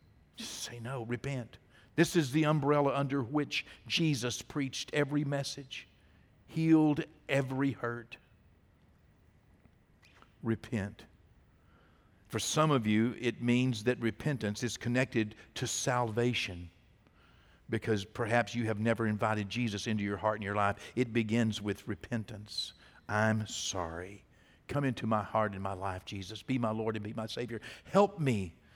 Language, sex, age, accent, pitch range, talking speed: English, male, 50-69, American, 105-150 Hz, 140 wpm